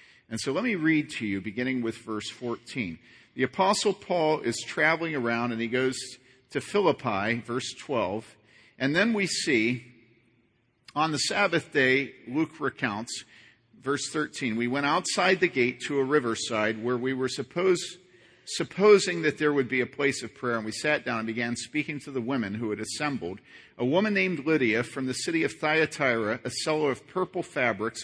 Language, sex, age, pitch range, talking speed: English, male, 50-69, 120-170 Hz, 180 wpm